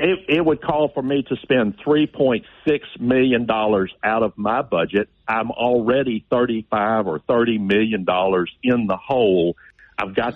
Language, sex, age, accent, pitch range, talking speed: English, male, 50-69, American, 110-135 Hz, 145 wpm